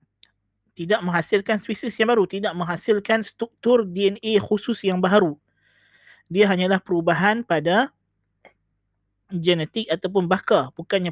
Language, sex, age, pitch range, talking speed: Malay, male, 20-39, 155-195 Hz, 110 wpm